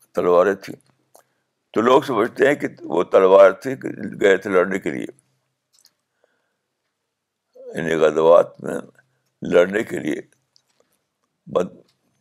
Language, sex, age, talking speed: Urdu, male, 60-79, 100 wpm